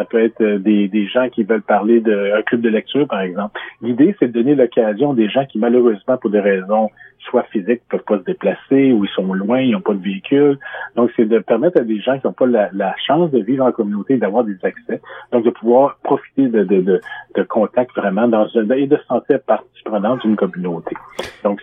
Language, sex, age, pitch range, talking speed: French, male, 40-59, 105-125 Hz, 230 wpm